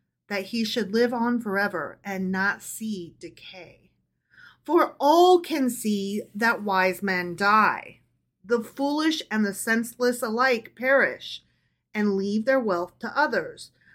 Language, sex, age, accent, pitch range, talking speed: English, female, 30-49, American, 205-250 Hz, 135 wpm